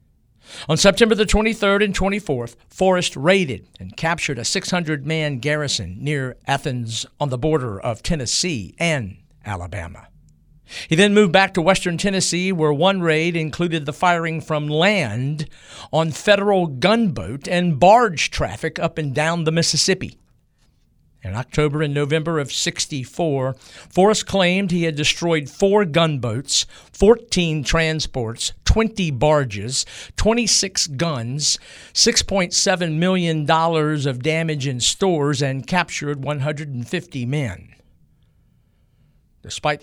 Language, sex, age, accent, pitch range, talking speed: English, male, 50-69, American, 125-175 Hz, 120 wpm